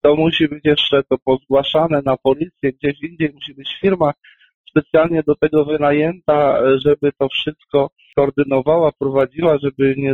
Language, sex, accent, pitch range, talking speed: Polish, male, native, 130-150 Hz, 140 wpm